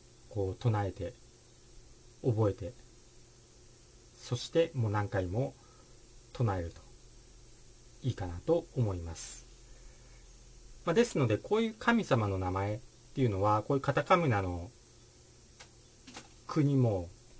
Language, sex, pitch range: Japanese, male, 105-125 Hz